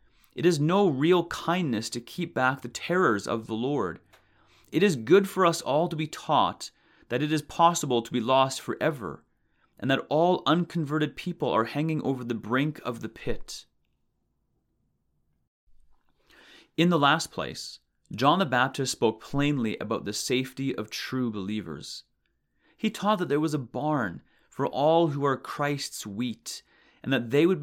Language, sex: English, male